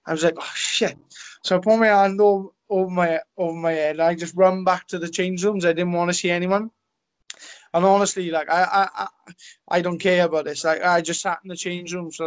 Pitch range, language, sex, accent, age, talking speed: 160-180 Hz, English, male, British, 20-39, 250 wpm